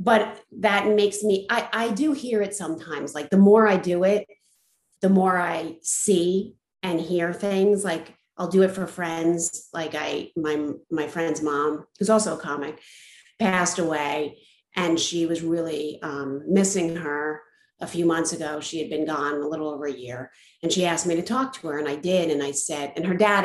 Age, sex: 40-59, female